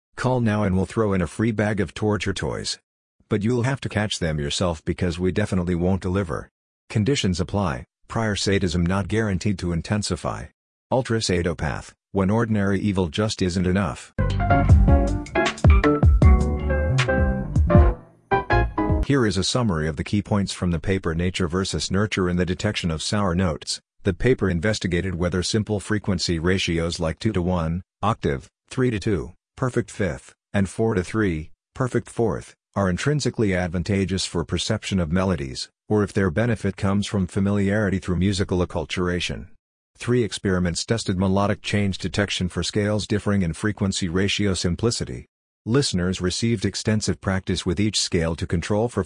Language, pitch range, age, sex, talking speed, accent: English, 90-105 Hz, 50-69, male, 150 wpm, American